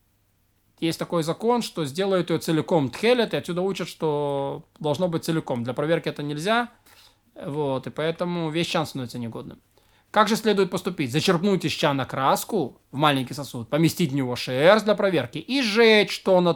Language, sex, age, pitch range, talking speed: Russian, male, 20-39, 155-200 Hz, 170 wpm